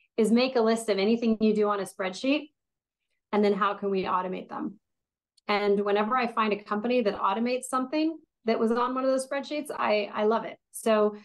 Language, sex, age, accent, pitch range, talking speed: English, female, 30-49, American, 210-255 Hz, 210 wpm